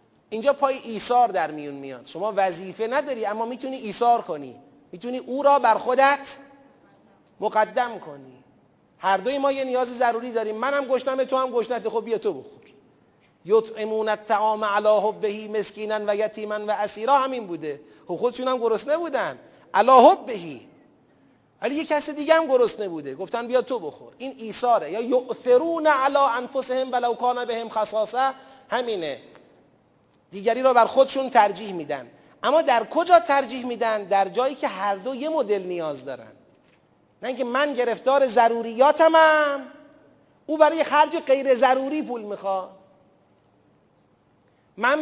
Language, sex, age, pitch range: Persian, male, 40-59, 210-270 Hz